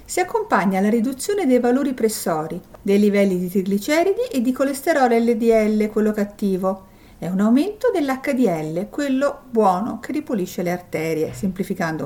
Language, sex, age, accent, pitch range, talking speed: Italian, female, 50-69, native, 185-255 Hz, 140 wpm